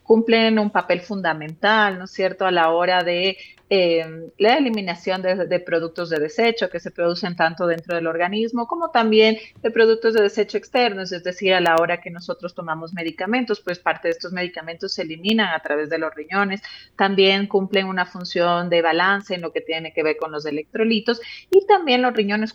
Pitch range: 170-215 Hz